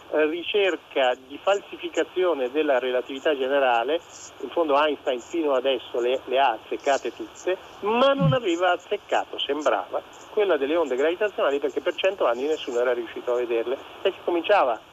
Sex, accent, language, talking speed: male, native, Italian, 150 wpm